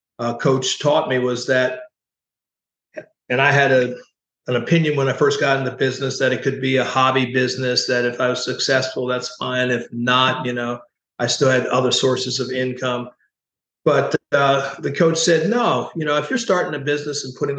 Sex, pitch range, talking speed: male, 125-145 Hz, 200 wpm